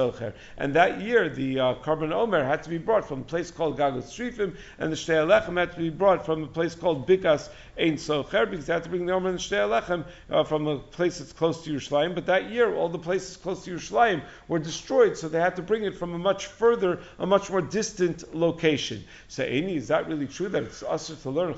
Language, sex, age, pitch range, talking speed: English, male, 50-69, 145-200 Hz, 240 wpm